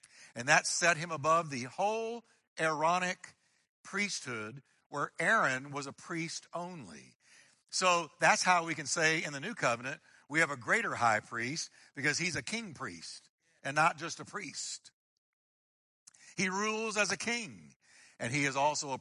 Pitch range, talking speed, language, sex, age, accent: 140-200 Hz, 160 wpm, English, male, 60-79, American